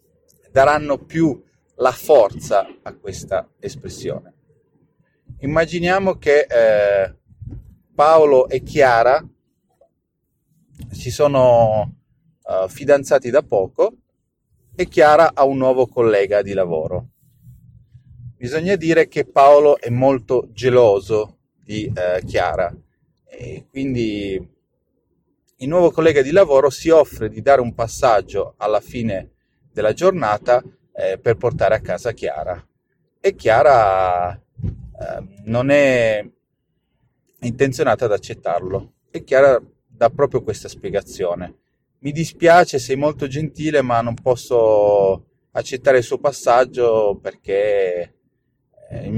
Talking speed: 105 wpm